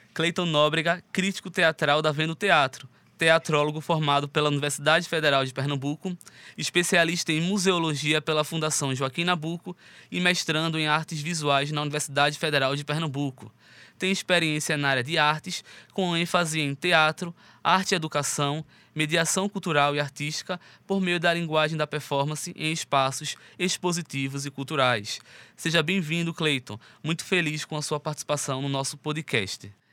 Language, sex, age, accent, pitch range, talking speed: Portuguese, male, 20-39, Brazilian, 130-160 Hz, 140 wpm